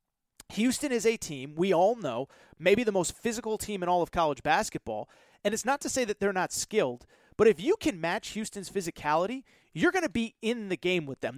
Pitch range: 175-220 Hz